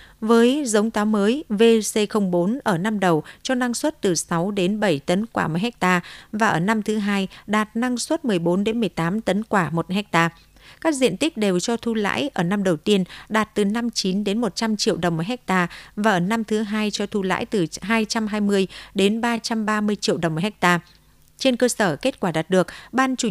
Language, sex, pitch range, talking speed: Vietnamese, female, 180-225 Hz, 200 wpm